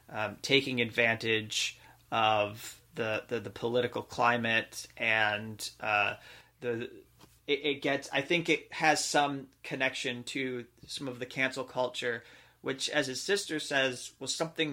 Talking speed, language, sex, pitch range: 140 wpm, English, male, 115-135 Hz